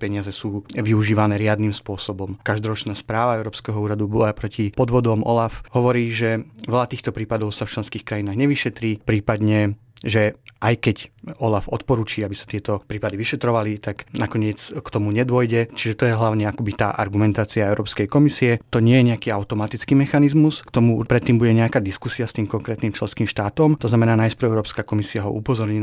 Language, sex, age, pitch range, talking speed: Slovak, male, 30-49, 105-120 Hz, 165 wpm